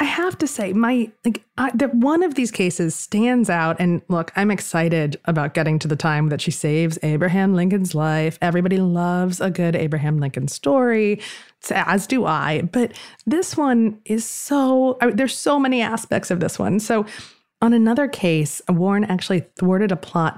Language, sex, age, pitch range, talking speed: English, female, 30-49, 170-235 Hz, 185 wpm